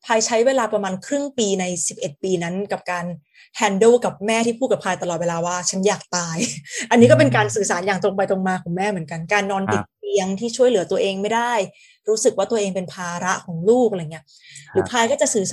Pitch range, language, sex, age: 190-250 Hz, Thai, female, 20-39